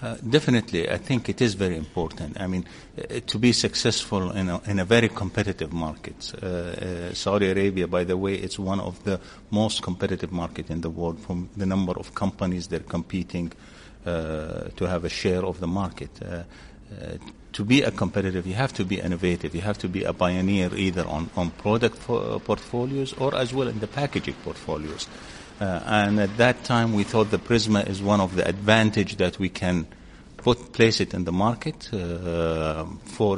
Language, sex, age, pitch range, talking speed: English, male, 50-69, 90-110 Hz, 200 wpm